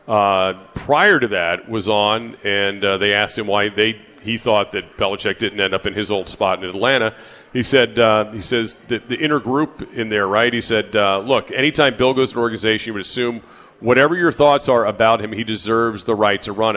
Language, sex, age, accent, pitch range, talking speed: English, male, 40-59, American, 100-115 Hz, 225 wpm